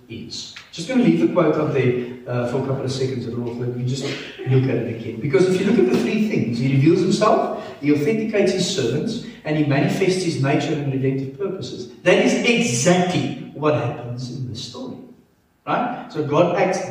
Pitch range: 125-170 Hz